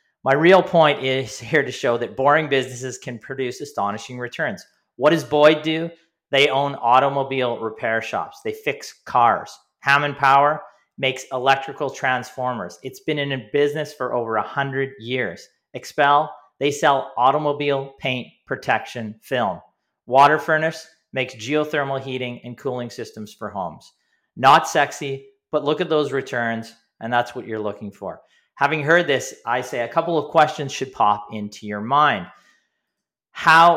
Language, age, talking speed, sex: English, 40-59, 155 wpm, male